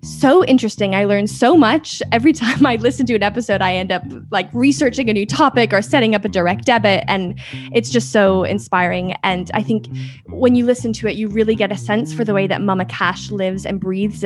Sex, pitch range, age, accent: female, 185-245 Hz, 10-29, American